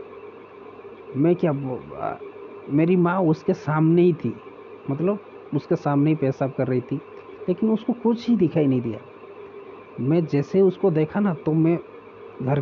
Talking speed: 145 wpm